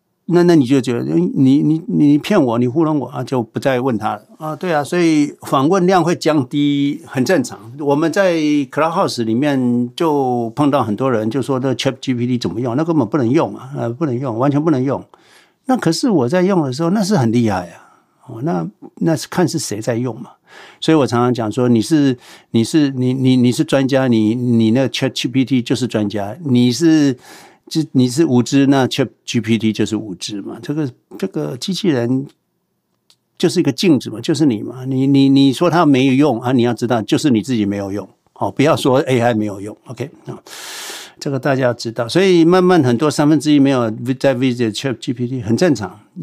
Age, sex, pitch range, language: 60-79, male, 120-150 Hz, Chinese